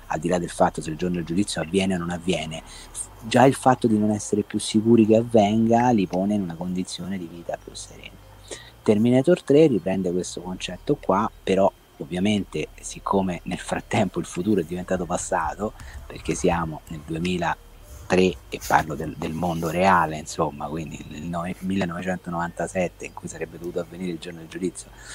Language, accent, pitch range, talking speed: Italian, native, 85-100 Hz, 175 wpm